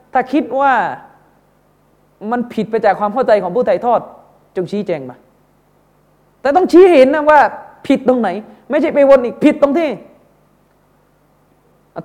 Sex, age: male, 30-49